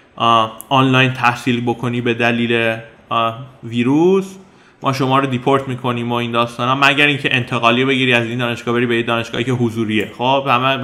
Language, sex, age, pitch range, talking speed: Persian, male, 20-39, 125-175 Hz, 155 wpm